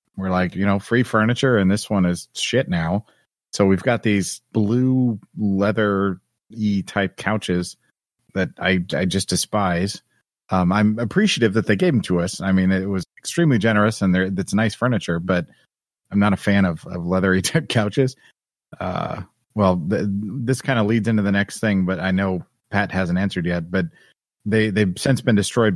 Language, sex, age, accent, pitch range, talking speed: English, male, 30-49, American, 95-115 Hz, 185 wpm